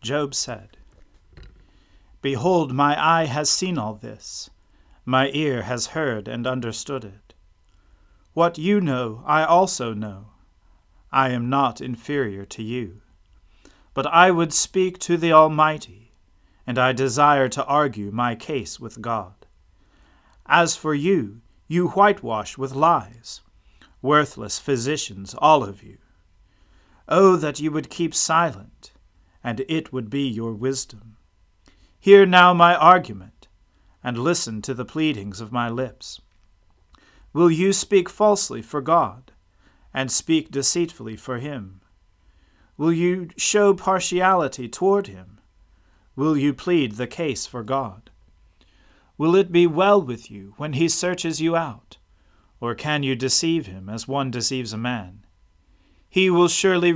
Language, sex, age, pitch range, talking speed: English, male, 40-59, 95-160 Hz, 135 wpm